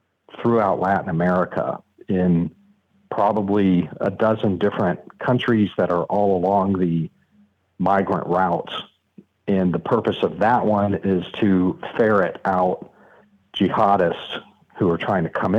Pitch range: 95-110 Hz